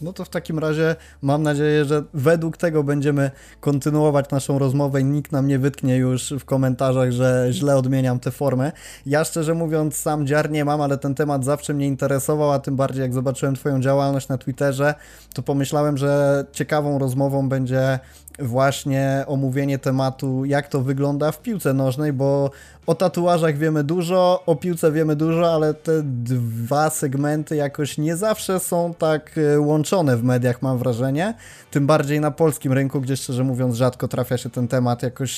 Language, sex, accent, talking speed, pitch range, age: Polish, male, native, 170 wpm, 130-155 Hz, 20-39